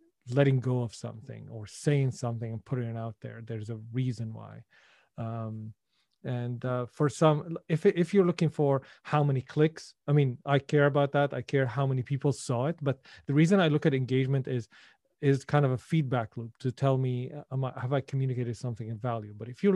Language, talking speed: English, 205 wpm